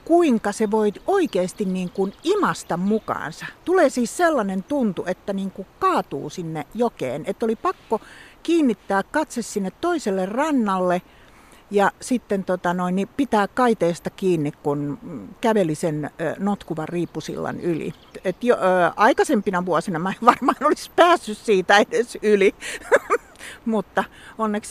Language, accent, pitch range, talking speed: Finnish, native, 185-235 Hz, 130 wpm